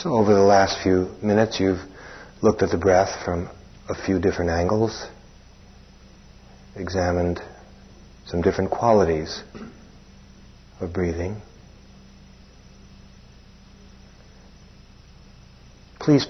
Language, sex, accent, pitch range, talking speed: English, male, American, 85-100 Hz, 85 wpm